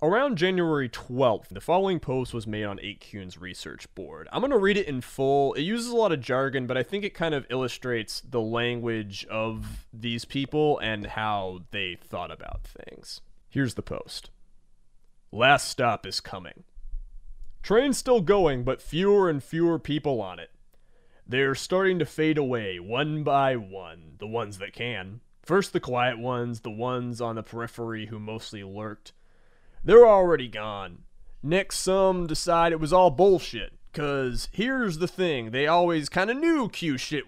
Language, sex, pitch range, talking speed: English, male, 115-175 Hz, 170 wpm